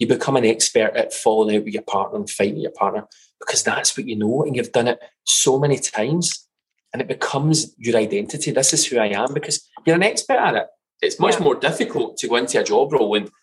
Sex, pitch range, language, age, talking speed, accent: male, 115-170 Hz, English, 20-39, 235 wpm, British